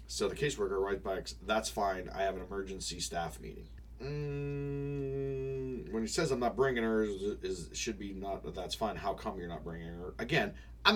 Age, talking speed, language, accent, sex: 30-49, 195 wpm, English, American, male